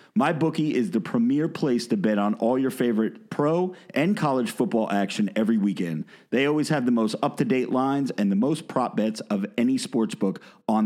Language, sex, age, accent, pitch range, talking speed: English, male, 40-59, American, 120-200 Hz, 210 wpm